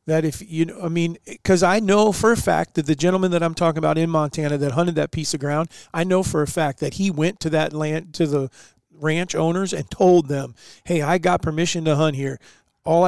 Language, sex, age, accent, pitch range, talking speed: English, male, 40-59, American, 150-175 Hz, 245 wpm